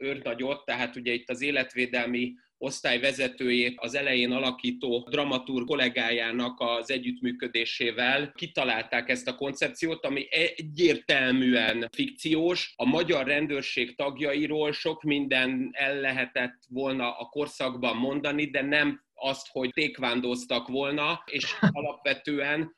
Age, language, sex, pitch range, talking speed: 30-49, Hungarian, male, 130-160 Hz, 110 wpm